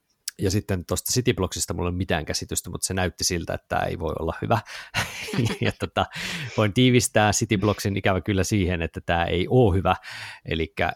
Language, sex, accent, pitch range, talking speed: Finnish, male, native, 85-105 Hz, 180 wpm